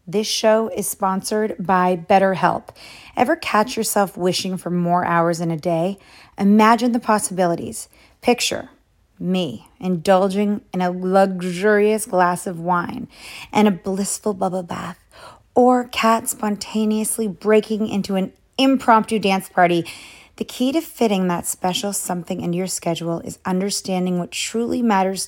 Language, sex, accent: English, female, American